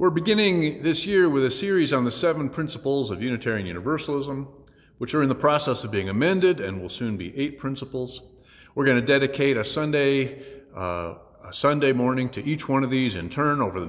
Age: 50-69